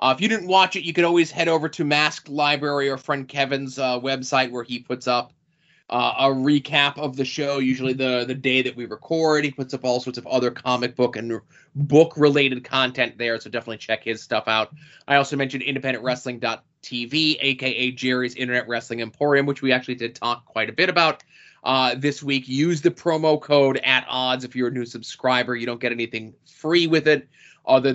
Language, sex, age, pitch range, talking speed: English, male, 20-39, 125-150 Hz, 205 wpm